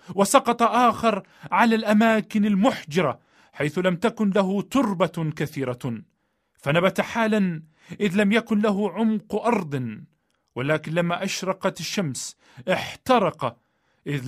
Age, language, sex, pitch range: 40-59, Arabic, male, 160-225 Hz